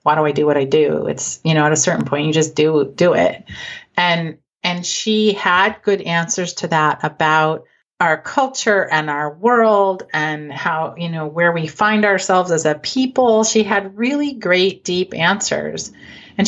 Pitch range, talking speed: 160-200 Hz, 185 wpm